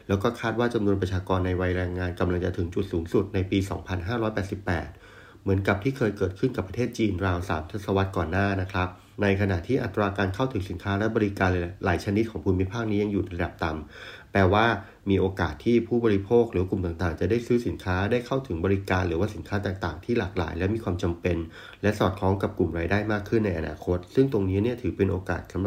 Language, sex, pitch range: Thai, male, 90-105 Hz